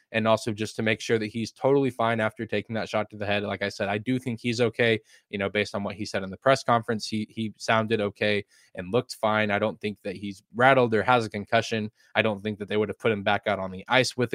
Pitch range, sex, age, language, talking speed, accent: 105-130 Hz, male, 20-39, English, 285 wpm, American